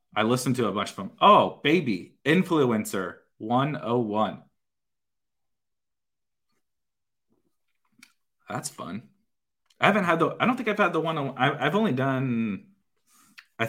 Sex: male